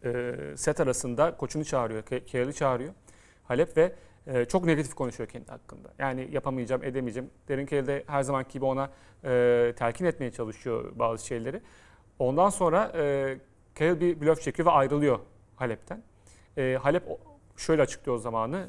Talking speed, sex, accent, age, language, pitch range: 135 wpm, male, native, 40-59, Turkish, 125-155 Hz